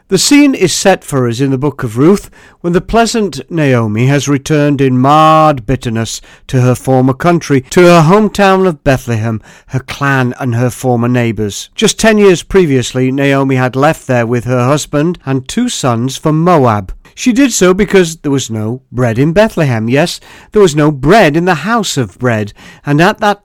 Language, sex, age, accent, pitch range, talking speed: English, male, 50-69, British, 125-170 Hz, 190 wpm